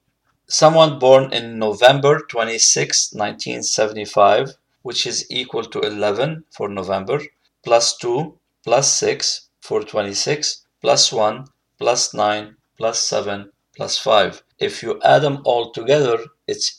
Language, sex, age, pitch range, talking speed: English, male, 50-69, 110-135 Hz, 120 wpm